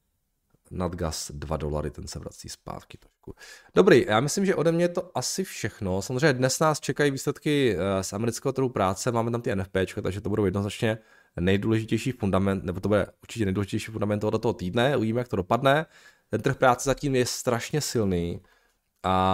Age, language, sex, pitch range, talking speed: 20-39, Czech, male, 95-120 Hz, 180 wpm